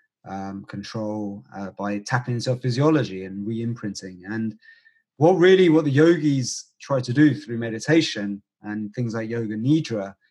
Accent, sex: British, male